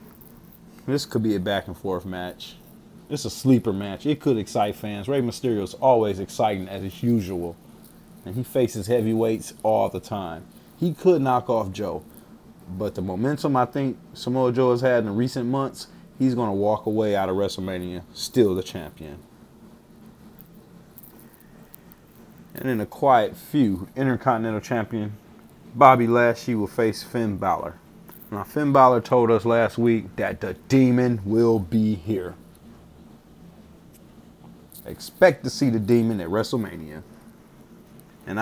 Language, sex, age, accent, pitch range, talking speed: English, male, 30-49, American, 100-125 Hz, 140 wpm